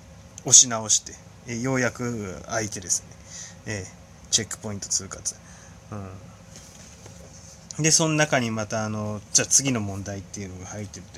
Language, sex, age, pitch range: Japanese, male, 20-39, 90-130 Hz